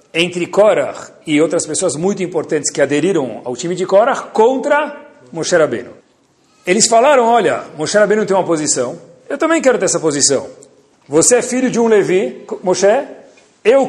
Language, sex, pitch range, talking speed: Portuguese, male, 165-255 Hz, 165 wpm